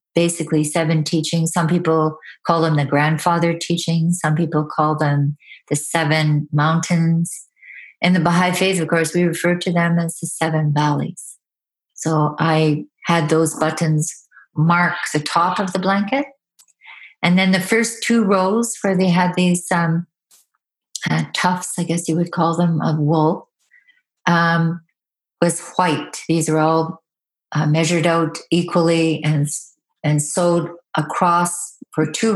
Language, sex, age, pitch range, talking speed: English, female, 40-59, 155-180 Hz, 150 wpm